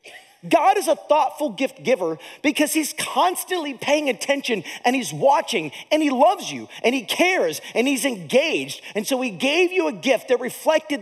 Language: English